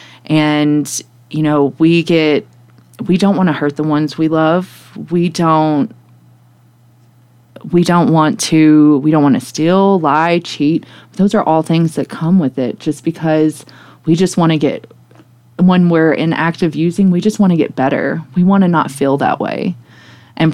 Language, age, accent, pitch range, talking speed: English, 20-39, American, 140-170 Hz, 180 wpm